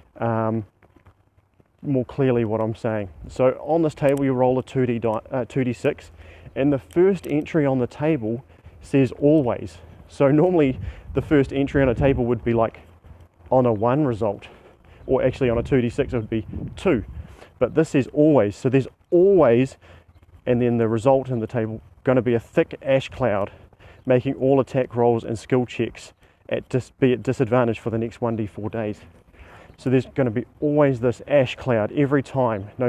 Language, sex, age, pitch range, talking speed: English, male, 30-49, 110-135 Hz, 185 wpm